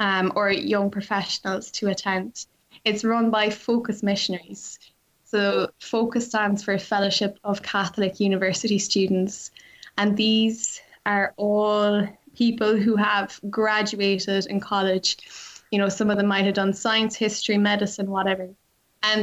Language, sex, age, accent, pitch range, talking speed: English, female, 10-29, Irish, 195-220 Hz, 135 wpm